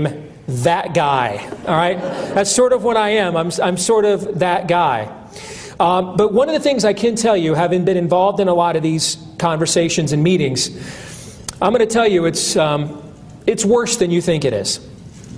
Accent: American